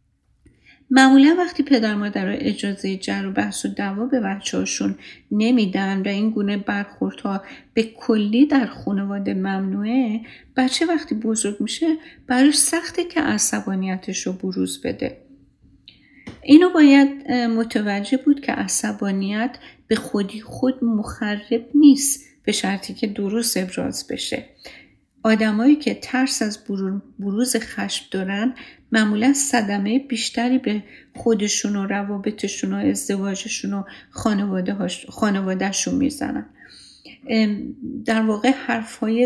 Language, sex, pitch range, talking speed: Persian, female, 200-260 Hz, 110 wpm